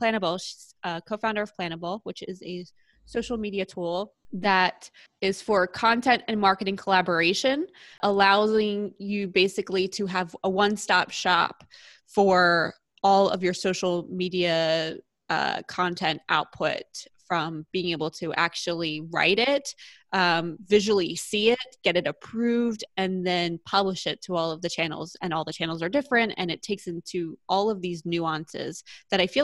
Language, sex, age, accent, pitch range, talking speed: English, female, 20-39, American, 170-200 Hz, 155 wpm